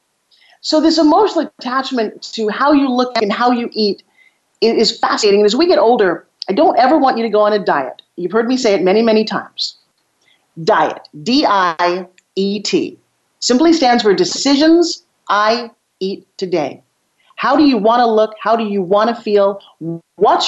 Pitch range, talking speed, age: 200-285 Hz, 170 wpm, 40-59